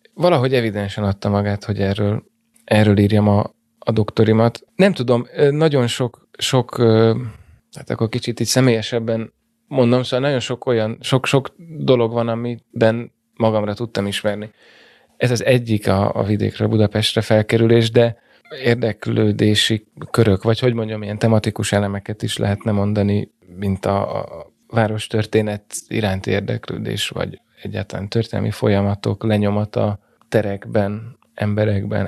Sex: male